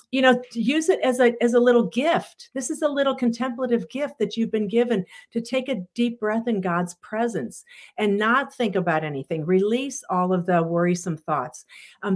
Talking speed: 200 wpm